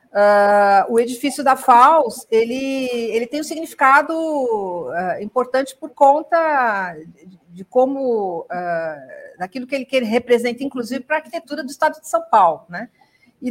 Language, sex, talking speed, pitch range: Portuguese, female, 155 wpm, 210-275 Hz